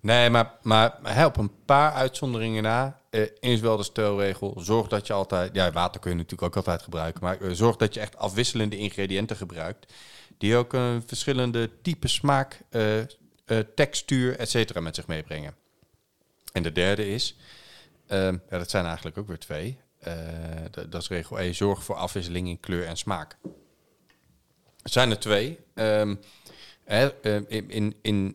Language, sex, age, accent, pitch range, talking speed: Dutch, male, 40-59, Dutch, 90-110 Hz, 175 wpm